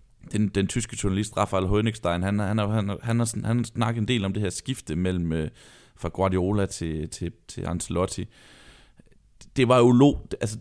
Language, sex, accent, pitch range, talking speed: Danish, male, native, 90-110 Hz, 175 wpm